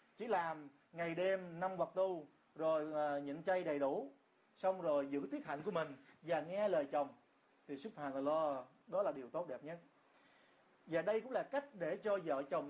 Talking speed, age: 205 wpm, 30-49